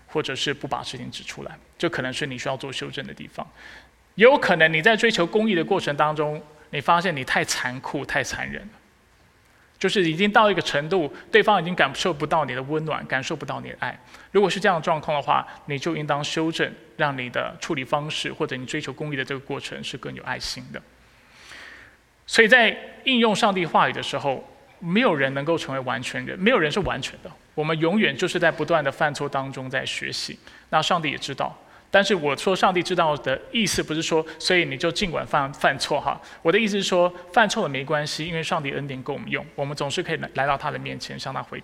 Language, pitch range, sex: Chinese, 140-180 Hz, male